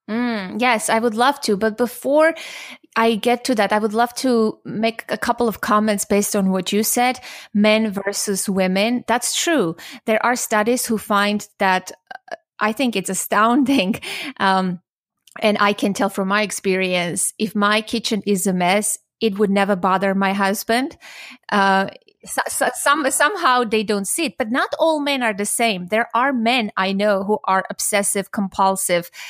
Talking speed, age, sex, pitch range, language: 175 wpm, 30-49, female, 195-240 Hz, English